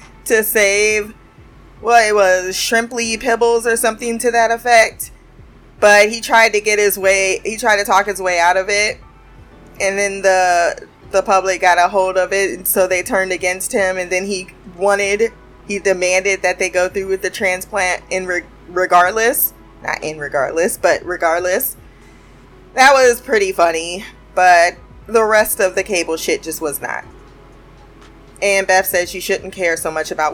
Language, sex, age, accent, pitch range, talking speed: English, female, 20-39, American, 180-225 Hz, 170 wpm